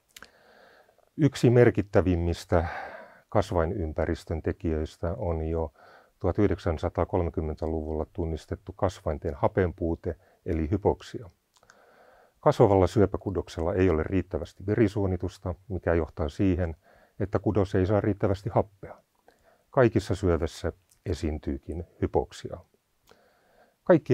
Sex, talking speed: male, 80 wpm